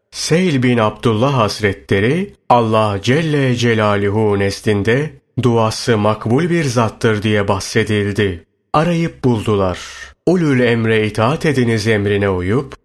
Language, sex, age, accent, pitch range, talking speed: Turkish, male, 40-59, native, 105-135 Hz, 105 wpm